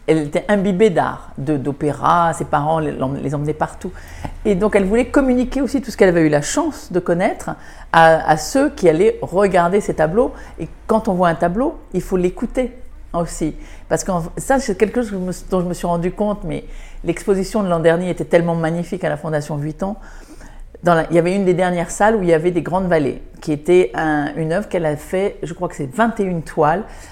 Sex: female